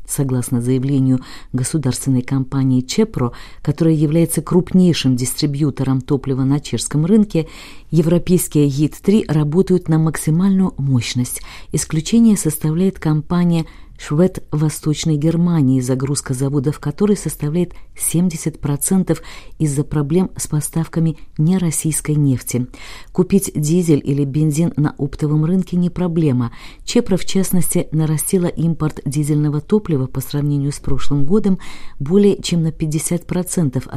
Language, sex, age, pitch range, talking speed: Russian, female, 40-59, 135-170 Hz, 110 wpm